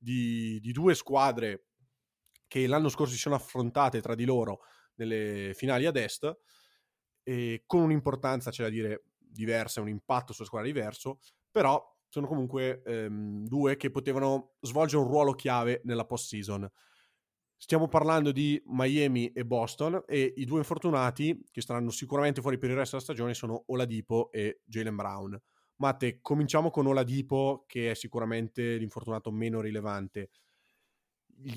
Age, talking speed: 20-39, 150 wpm